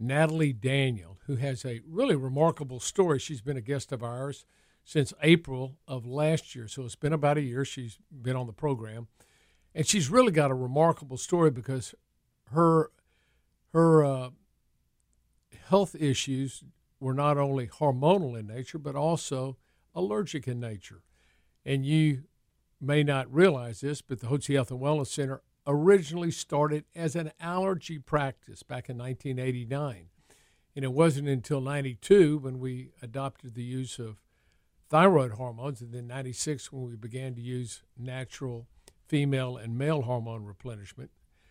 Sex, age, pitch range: male, 50-69, 120-150 Hz